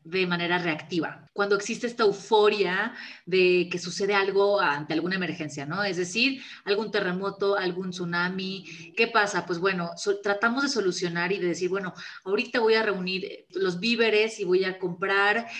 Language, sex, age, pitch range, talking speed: Spanish, female, 30-49, 180-215 Hz, 165 wpm